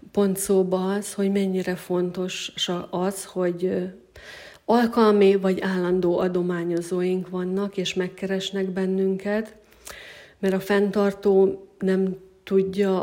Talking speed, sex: 95 wpm, female